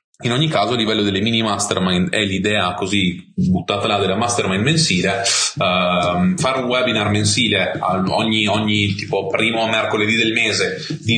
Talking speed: 155 wpm